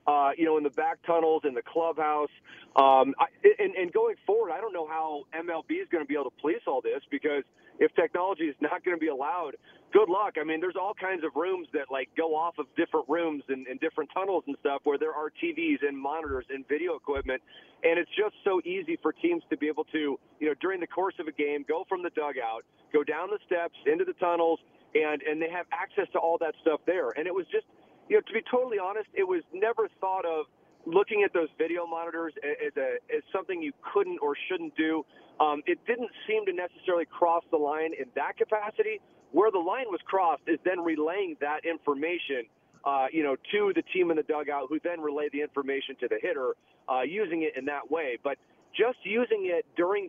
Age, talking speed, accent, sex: 30-49, 225 wpm, American, male